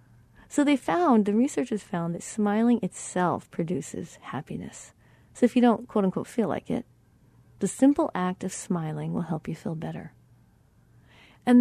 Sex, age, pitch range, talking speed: female, 40-59, 175-245 Hz, 155 wpm